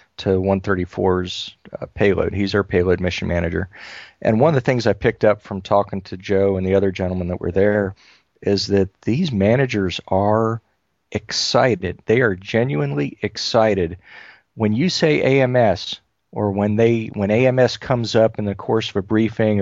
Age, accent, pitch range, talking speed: 40-59, American, 95-110 Hz, 170 wpm